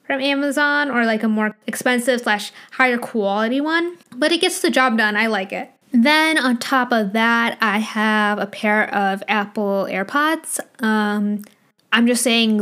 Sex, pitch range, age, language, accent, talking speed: female, 210-255 Hz, 10-29, English, American, 170 wpm